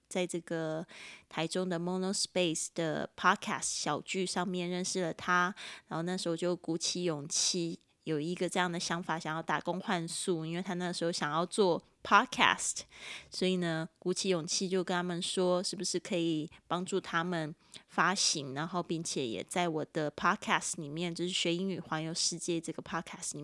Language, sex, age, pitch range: Chinese, female, 20-39, 165-185 Hz